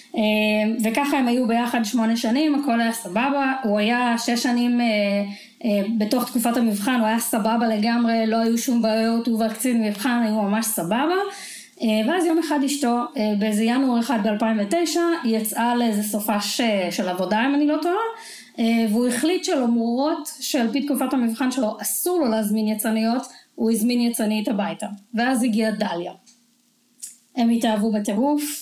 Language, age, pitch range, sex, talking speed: Hebrew, 20-39, 220-250 Hz, female, 145 wpm